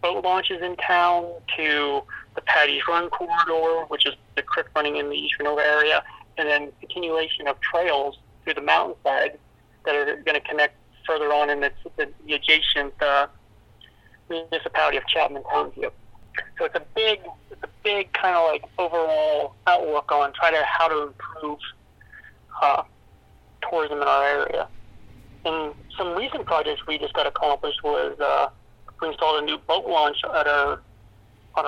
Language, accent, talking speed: English, American, 165 wpm